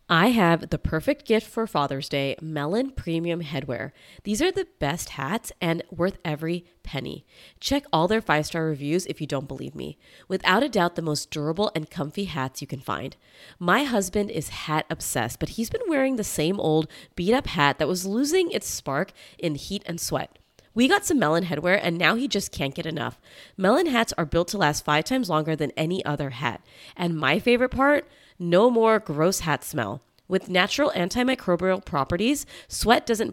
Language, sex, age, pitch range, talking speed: English, female, 30-49, 150-225 Hz, 190 wpm